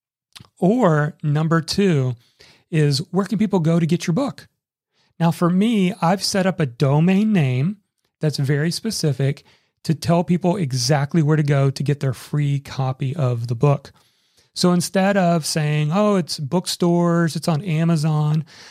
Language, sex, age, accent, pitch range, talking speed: English, male, 40-59, American, 140-175 Hz, 155 wpm